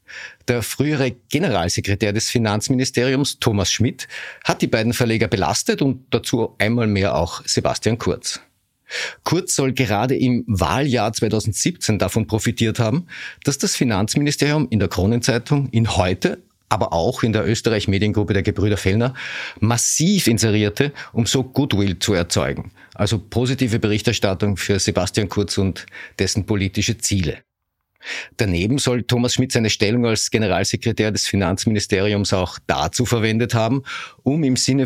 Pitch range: 100-125 Hz